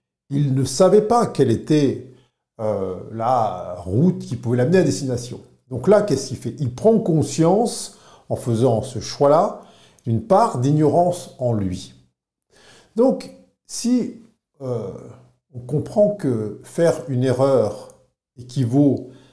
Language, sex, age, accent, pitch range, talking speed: French, male, 50-69, French, 115-165 Hz, 125 wpm